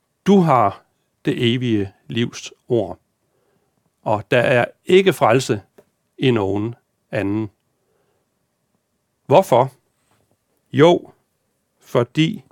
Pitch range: 115-170 Hz